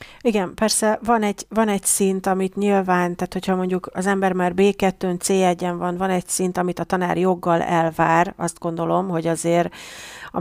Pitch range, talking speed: 175-195 Hz, 175 wpm